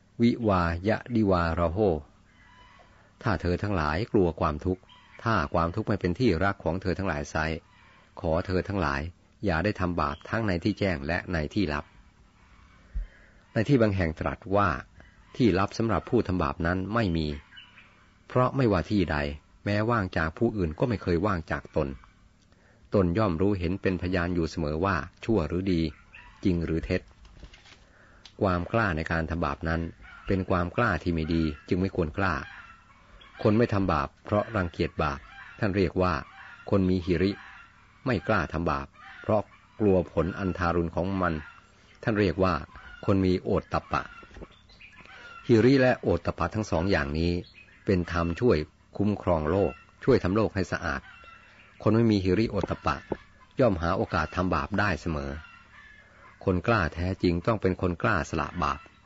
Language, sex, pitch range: Thai, male, 85-100 Hz